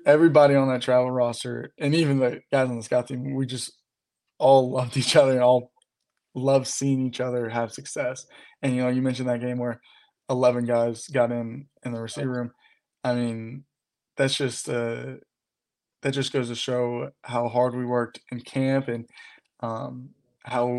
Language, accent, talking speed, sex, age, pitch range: English, American, 180 wpm, male, 20-39, 120-135 Hz